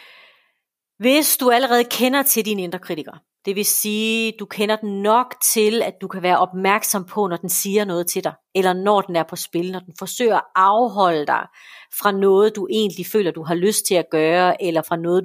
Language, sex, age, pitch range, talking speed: Danish, female, 40-59, 175-220 Hz, 215 wpm